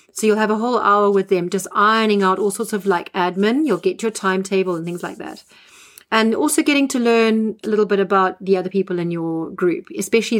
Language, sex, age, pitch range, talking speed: English, female, 30-49, 185-225 Hz, 230 wpm